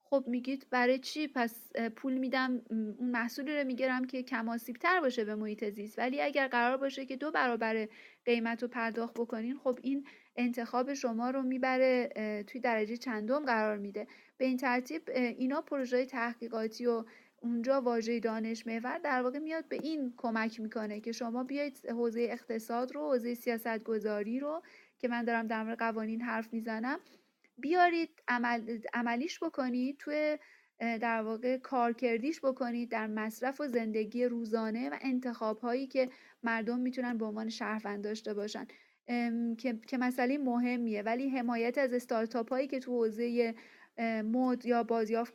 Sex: female